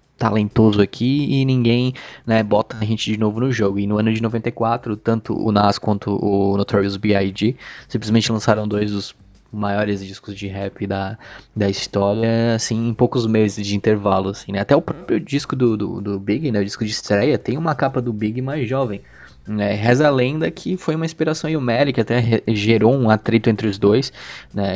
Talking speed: 200 wpm